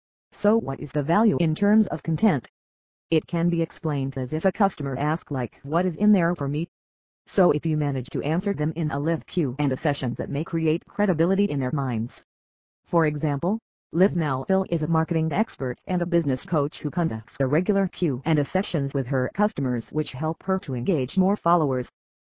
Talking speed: 205 wpm